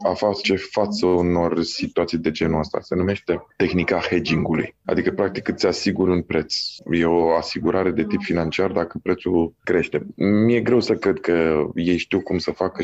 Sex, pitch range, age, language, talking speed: male, 90-125 Hz, 20-39, Romanian, 180 wpm